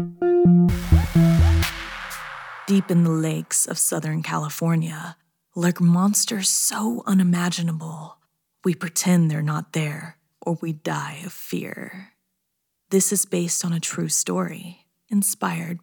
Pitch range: 155-190 Hz